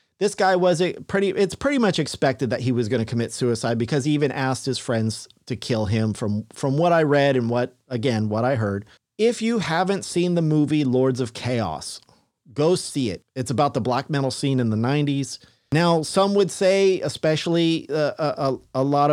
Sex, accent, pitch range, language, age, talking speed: male, American, 130-185 Hz, English, 40-59, 205 wpm